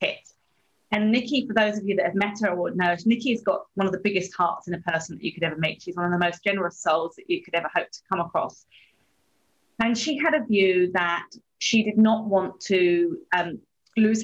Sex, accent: female, British